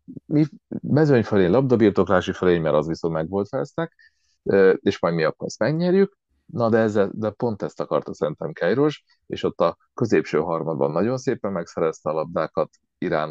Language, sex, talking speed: Hungarian, male, 160 wpm